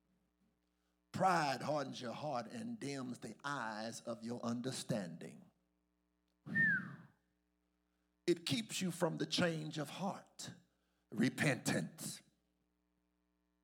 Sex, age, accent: male, 50-69, American